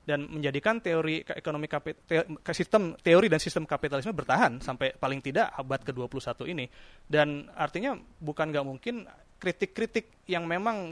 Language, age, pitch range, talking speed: Indonesian, 30-49, 140-170 Hz, 145 wpm